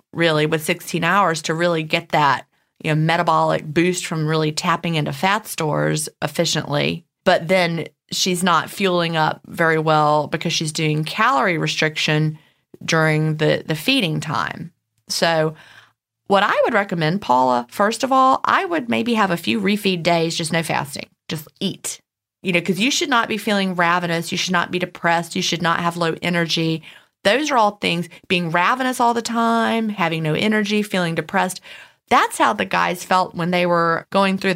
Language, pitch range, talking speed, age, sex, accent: English, 160-195 Hz, 180 wpm, 30-49, female, American